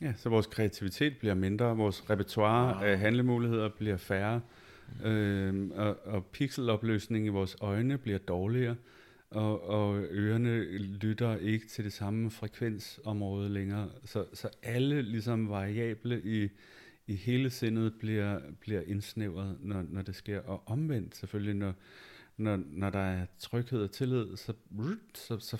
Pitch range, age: 100-120 Hz, 30-49